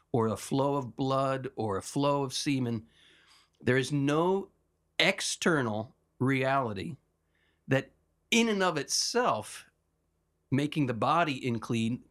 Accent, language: American, English